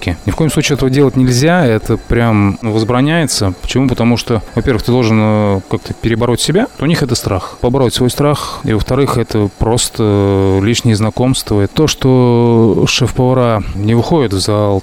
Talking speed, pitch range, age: 160 wpm, 105-130 Hz, 20-39